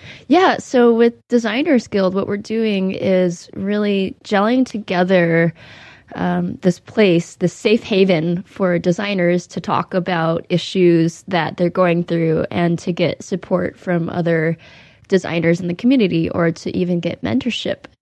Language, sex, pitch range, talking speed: English, female, 170-190 Hz, 145 wpm